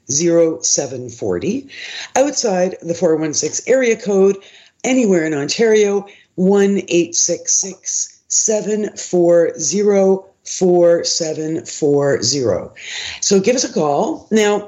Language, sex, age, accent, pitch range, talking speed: English, female, 50-69, American, 165-205 Hz, 70 wpm